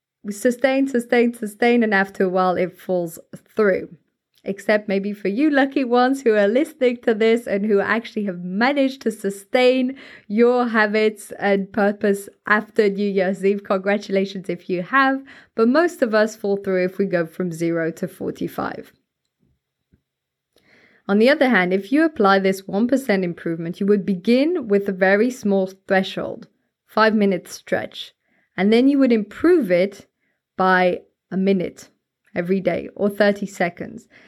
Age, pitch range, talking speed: 20-39, 185-235 Hz, 155 wpm